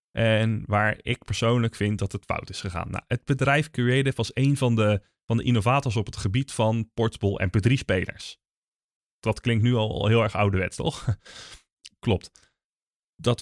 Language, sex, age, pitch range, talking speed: Dutch, male, 20-39, 100-130 Hz, 160 wpm